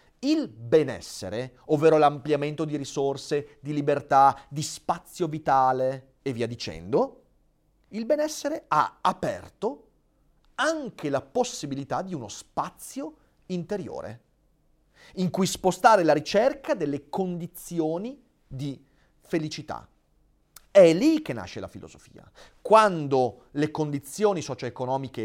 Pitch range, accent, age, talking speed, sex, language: 135-205 Hz, native, 40-59, 105 wpm, male, Italian